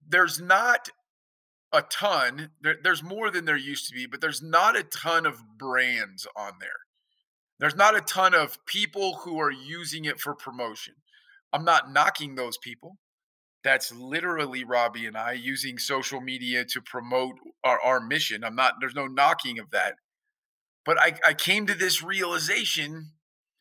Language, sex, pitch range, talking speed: English, male, 135-195 Hz, 165 wpm